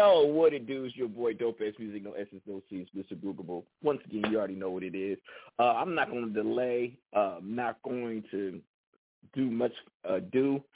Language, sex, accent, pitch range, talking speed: English, male, American, 110-145 Hz, 220 wpm